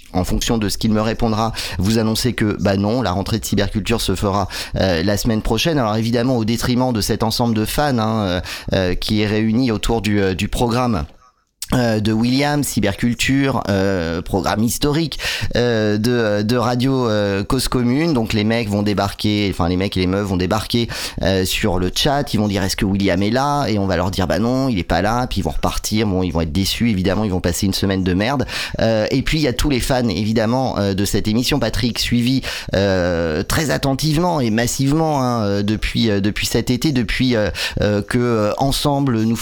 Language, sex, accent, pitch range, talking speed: French, male, French, 105-125 Hz, 215 wpm